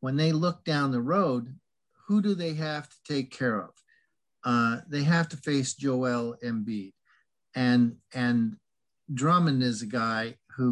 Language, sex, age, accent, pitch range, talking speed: English, male, 50-69, American, 120-145 Hz, 155 wpm